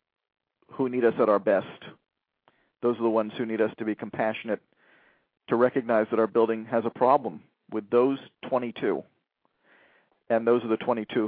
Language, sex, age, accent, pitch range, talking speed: English, male, 40-59, American, 105-125 Hz, 170 wpm